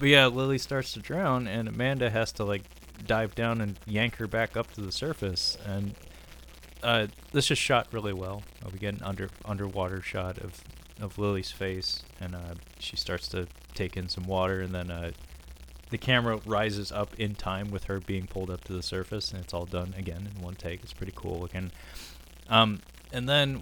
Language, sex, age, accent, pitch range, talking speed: English, male, 20-39, American, 85-110 Hz, 200 wpm